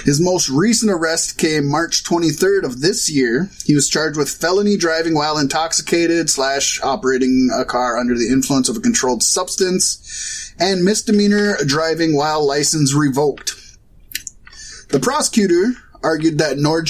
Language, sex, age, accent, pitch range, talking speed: English, male, 20-39, American, 155-210 Hz, 140 wpm